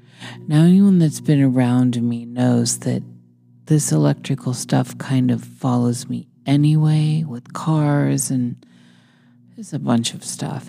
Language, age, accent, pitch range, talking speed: English, 40-59, American, 90-150 Hz, 135 wpm